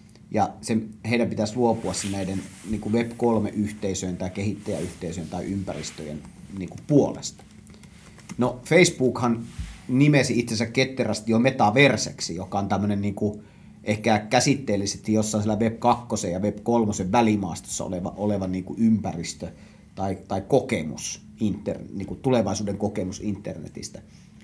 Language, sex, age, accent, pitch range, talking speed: Finnish, male, 30-49, native, 100-120 Hz, 110 wpm